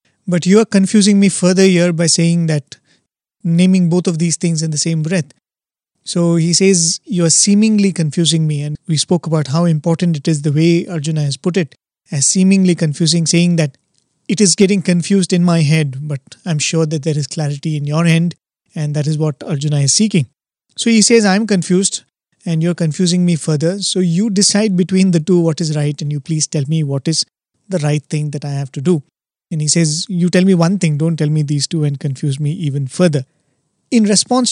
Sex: male